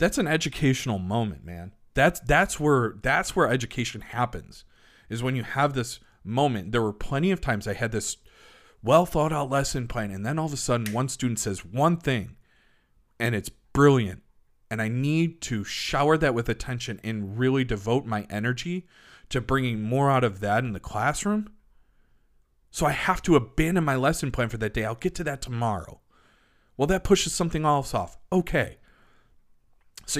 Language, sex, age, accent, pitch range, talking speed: English, male, 40-59, American, 110-155 Hz, 185 wpm